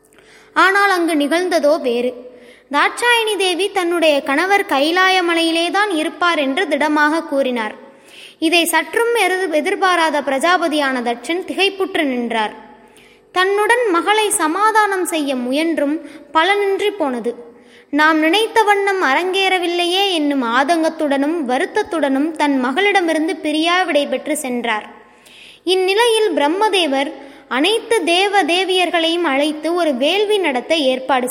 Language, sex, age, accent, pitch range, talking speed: Tamil, female, 20-39, native, 275-380 Hz, 80 wpm